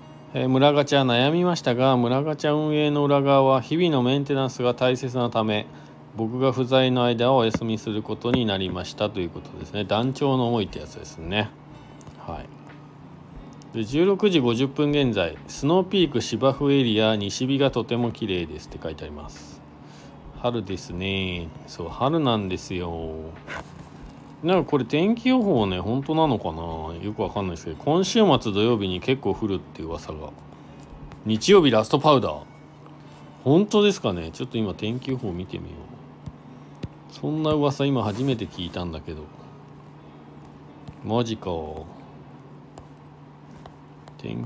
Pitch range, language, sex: 95-140 Hz, Japanese, male